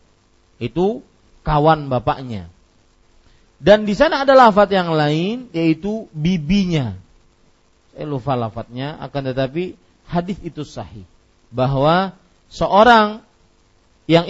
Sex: male